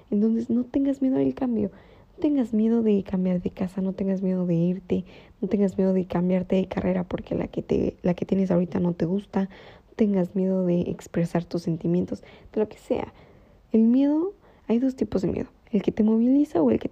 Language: Spanish